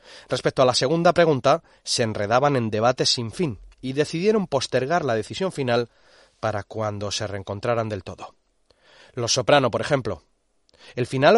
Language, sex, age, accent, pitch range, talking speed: Spanish, male, 30-49, Spanish, 110-150 Hz, 155 wpm